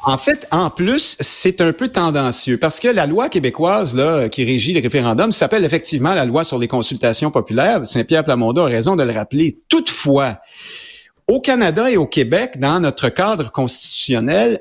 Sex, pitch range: male, 125-185 Hz